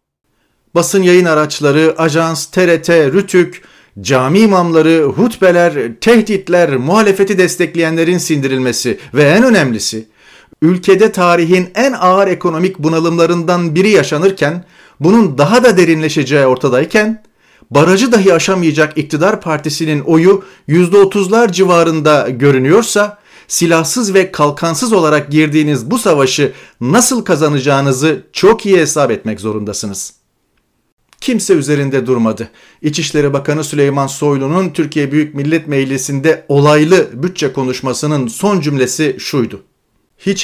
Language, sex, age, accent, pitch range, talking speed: Turkish, male, 40-59, native, 135-180 Hz, 105 wpm